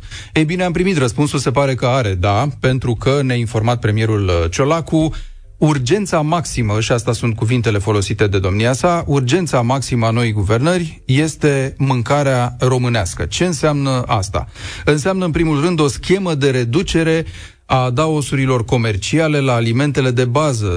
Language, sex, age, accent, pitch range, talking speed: Romanian, male, 30-49, native, 115-150 Hz, 150 wpm